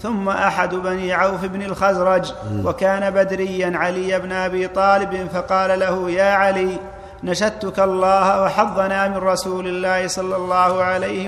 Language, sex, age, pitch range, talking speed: Arabic, male, 40-59, 180-190 Hz, 135 wpm